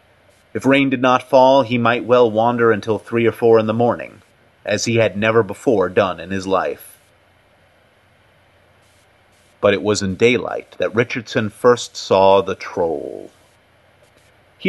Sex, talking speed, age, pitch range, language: male, 150 wpm, 30-49, 100-125 Hz, English